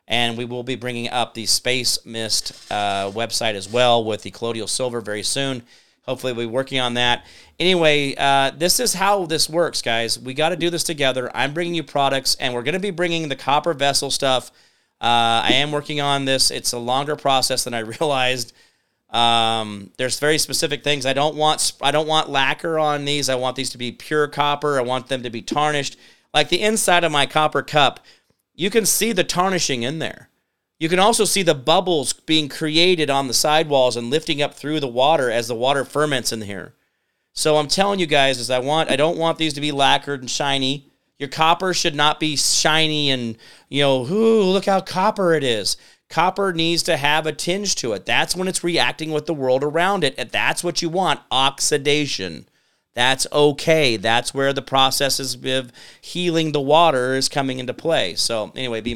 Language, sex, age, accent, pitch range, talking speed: English, male, 40-59, American, 125-160 Hz, 205 wpm